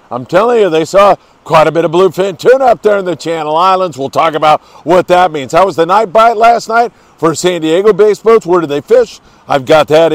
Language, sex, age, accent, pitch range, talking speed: English, male, 50-69, American, 145-180 Hz, 250 wpm